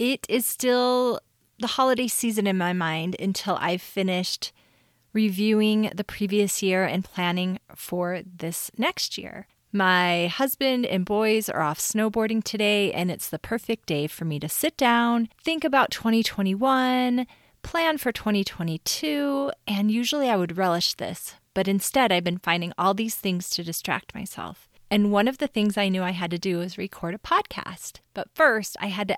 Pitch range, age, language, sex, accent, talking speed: 175-225 Hz, 30-49, English, female, American, 170 wpm